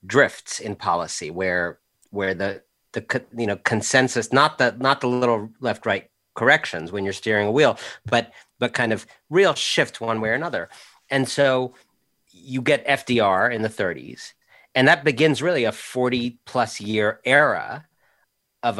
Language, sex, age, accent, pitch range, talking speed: English, male, 40-59, American, 105-135 Hz, 165 wpm